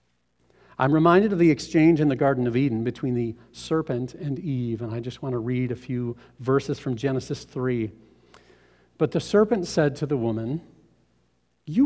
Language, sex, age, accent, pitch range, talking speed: English, male, 40-59, American, 125-180 Hz, 175 wpm